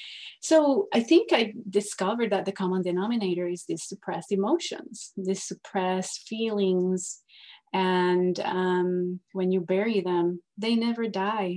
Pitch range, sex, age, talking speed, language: 180-200 Hz, female, 30-49, 130 wpm, English